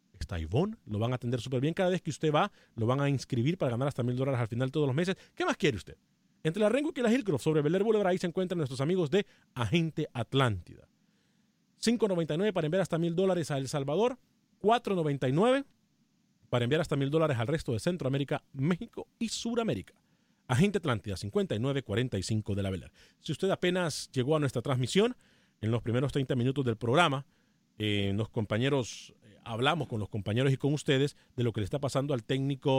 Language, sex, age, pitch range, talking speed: Spanish, male, 30-49, 120-180 Hz, 200 wpm